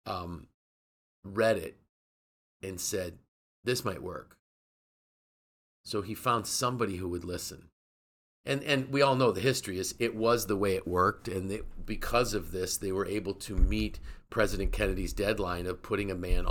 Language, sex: English, male